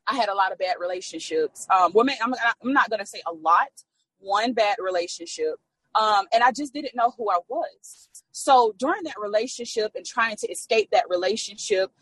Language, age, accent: English, 30-49, American